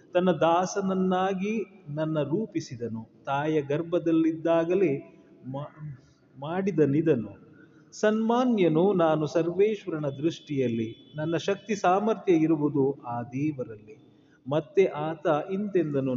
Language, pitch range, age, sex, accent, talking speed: Kannada, 125-180 Hz, 30-49, male, native, 80 wpm